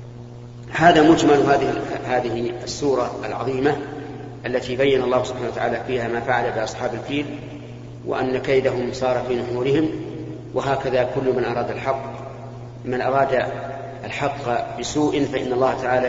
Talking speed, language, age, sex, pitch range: 120 wpm, Arabic, 50-69, male, 120-140 Hz